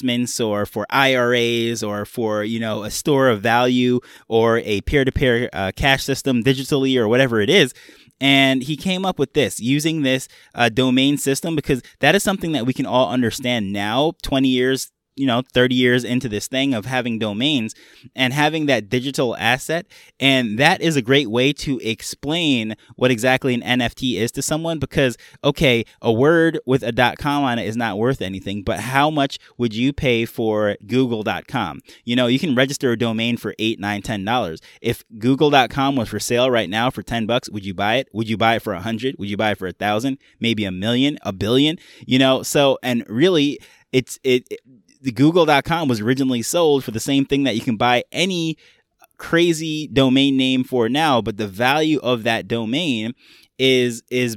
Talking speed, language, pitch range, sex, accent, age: 190 wpm, English, 115-135 Hz, male, American, 20-39